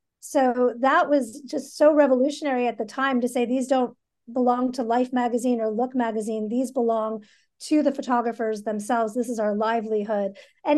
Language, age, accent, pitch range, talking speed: English, 40-59, American, 230-280 Hz, 175 wpm